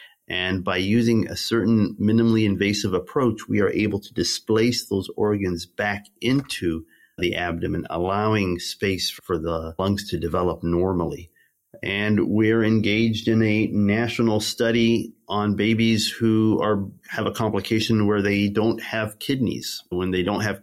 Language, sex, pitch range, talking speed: English, male, 95-110 Hz, 145 wpm